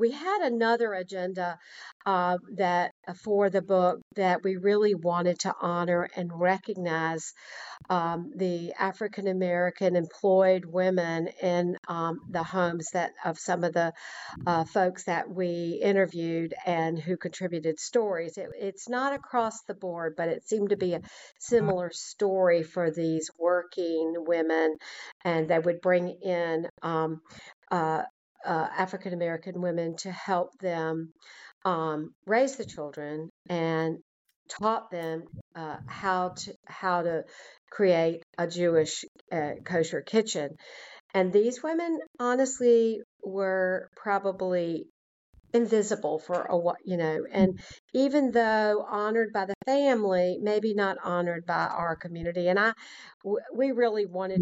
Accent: American